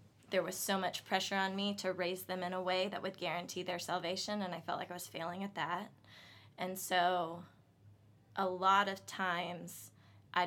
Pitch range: 135-195 Hz